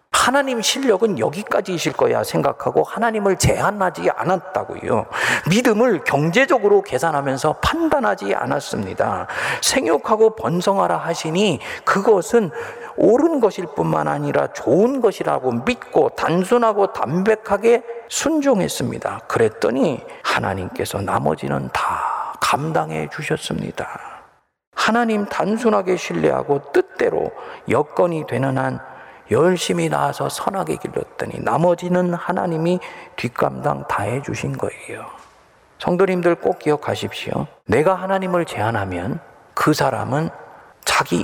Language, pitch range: Korean, 135-220 Hz